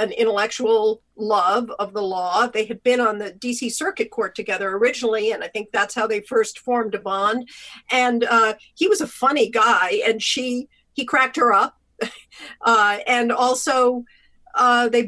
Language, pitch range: English, 215-255 Hz